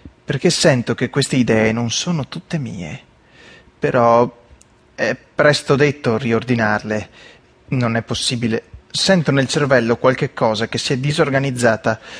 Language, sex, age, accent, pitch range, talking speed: Italian, male, 30-49, native, 120-160 Hz, 130 wpm